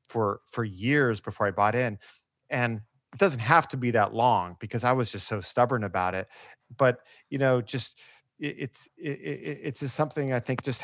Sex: male